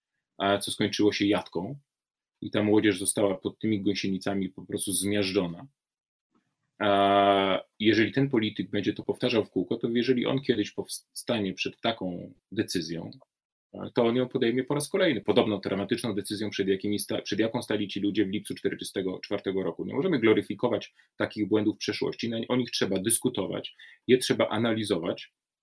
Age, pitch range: 30-49, 100-120 Hz